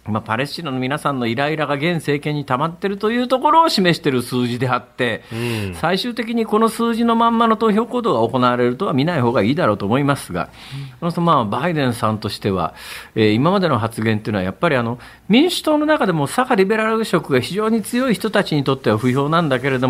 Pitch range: 120-205 Hz